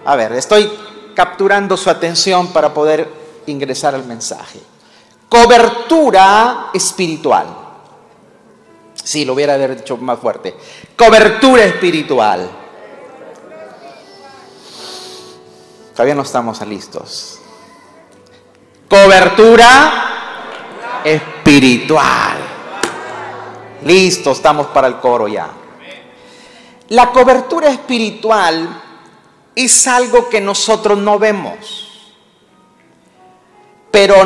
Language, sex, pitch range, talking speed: Spanish, male, 155-220 Hz, 75 wpm